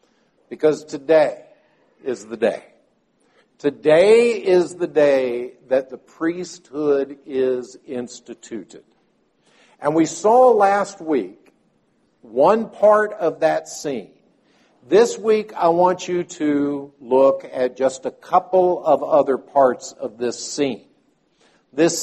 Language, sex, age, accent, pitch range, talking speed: English, male, 60-79, American, 145-195 Hz, 115 wpm